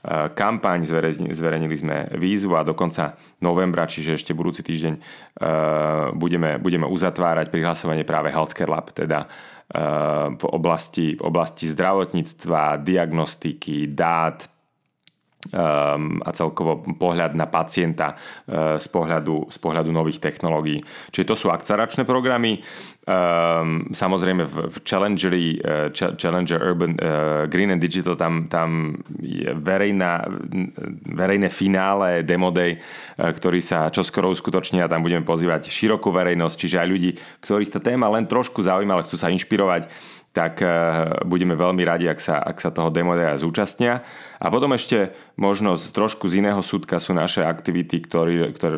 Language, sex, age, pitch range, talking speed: Slovak, male, 30-49, 80-95 Hz, 125 wpm